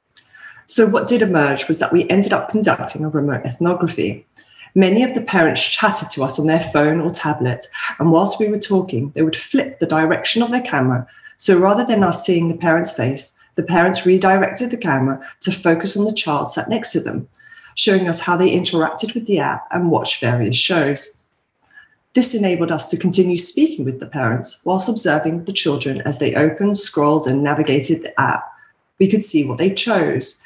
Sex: female